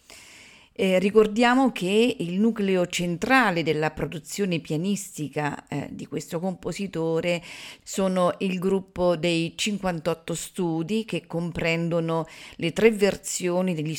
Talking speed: 105 wpm